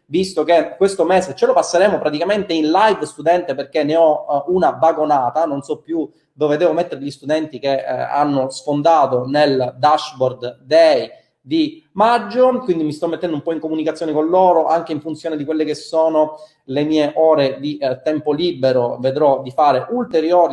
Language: Italian